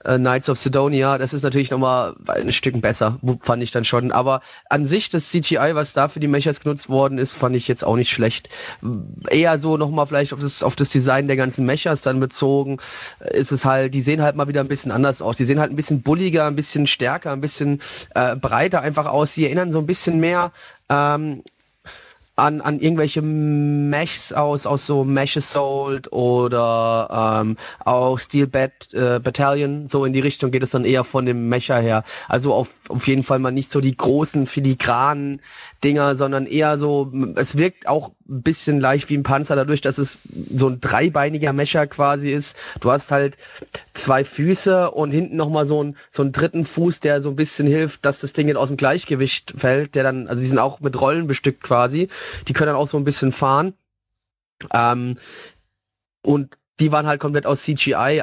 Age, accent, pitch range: 30-49, German, 130-150 Hz